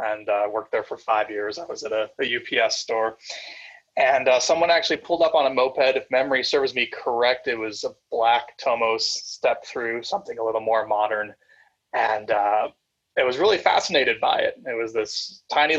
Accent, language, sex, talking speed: American, English, male, 200 wpm